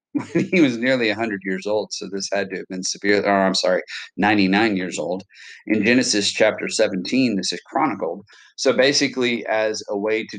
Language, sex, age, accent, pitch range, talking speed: English, male, 40-59, American, 95-120 Hz, 180 wpm